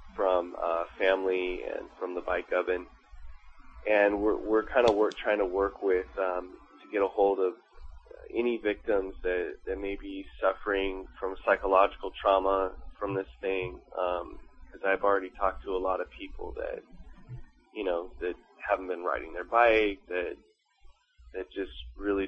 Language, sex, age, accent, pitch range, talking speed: English, male, 20-39, American, 90-105 Hz, 160 wpm